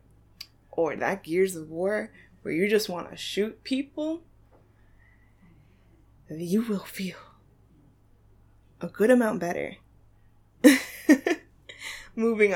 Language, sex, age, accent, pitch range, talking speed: English, female, 20-39, American, 165-215 Hz, 95 wpm